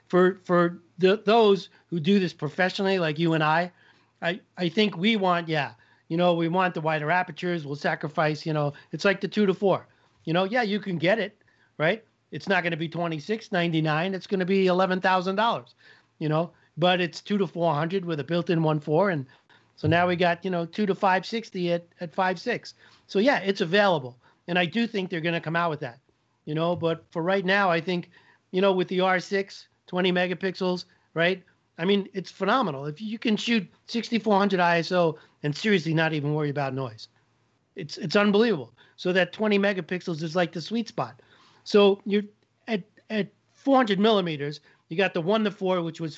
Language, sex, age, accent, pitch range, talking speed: English, male, 40-59, American, 160-195 Hz, 210 wpm